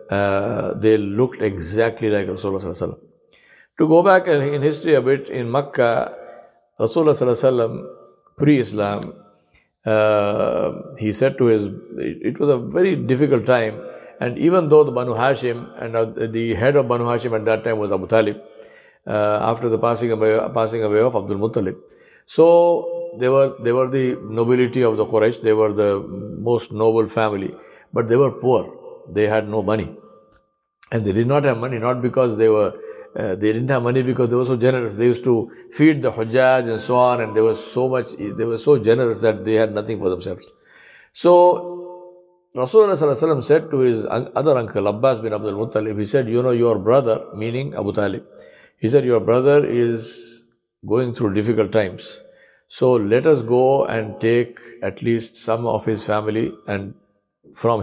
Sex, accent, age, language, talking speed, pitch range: male, Indian, 60-79, English, 180 wpm, 110-130 Hz